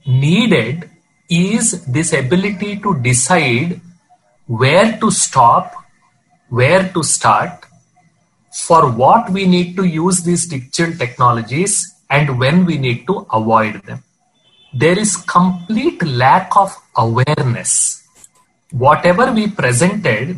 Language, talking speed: Hindi, 110 wpm